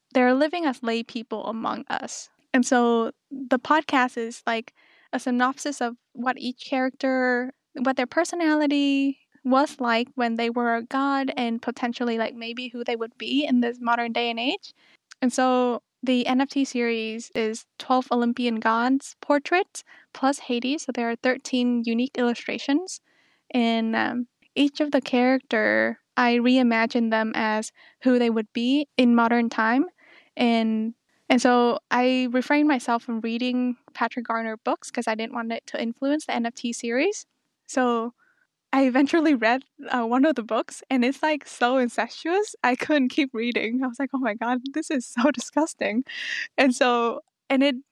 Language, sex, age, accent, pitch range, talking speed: English, female, 10-29, American, 235-275 Hz, 165 wpm